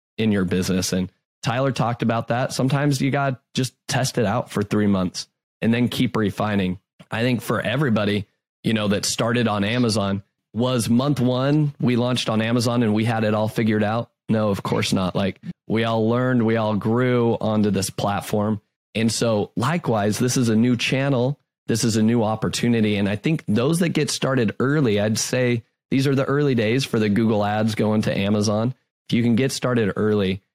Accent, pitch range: American, 105-125 Hz